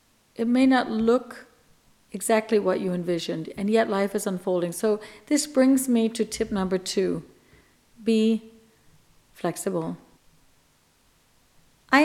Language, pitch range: English, 195-235 Hz